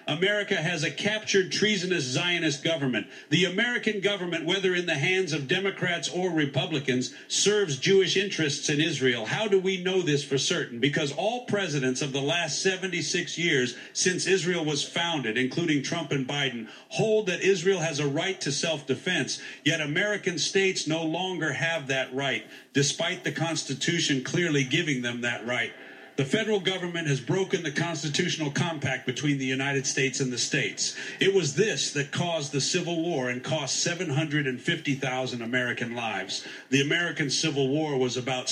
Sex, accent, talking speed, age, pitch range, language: male, American, 160 wpm, 50-69, 135-175 Hz, English